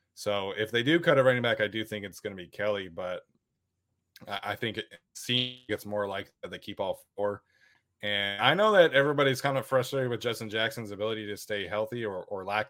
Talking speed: 215 wpm